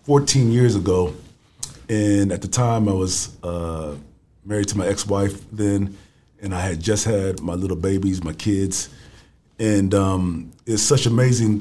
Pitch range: 90-115 Hz